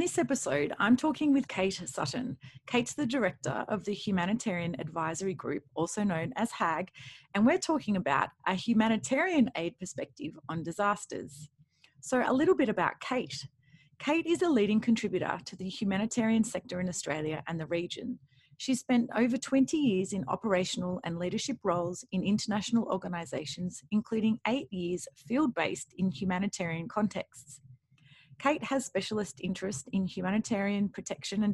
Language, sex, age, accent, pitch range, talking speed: English, female, 30-49, Australian, 170-230 Hz, 145 wpm